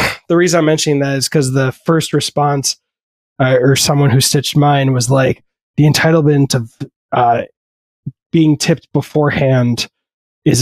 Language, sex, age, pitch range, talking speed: English, male, 20-39, 120-150 Hz, 145 wpm